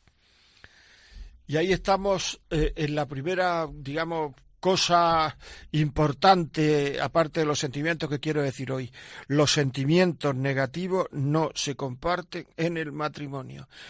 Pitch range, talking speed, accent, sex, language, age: 145-185 Hz, 115 wpm, Spanish, male, Spanish, 50-69